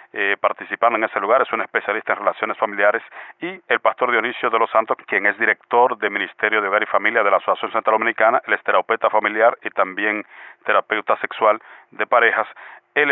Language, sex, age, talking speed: English, male, 40-59, 190 wpm